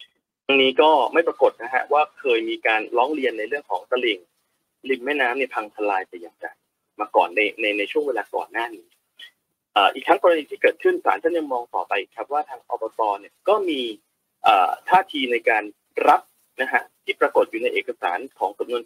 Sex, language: male, Thai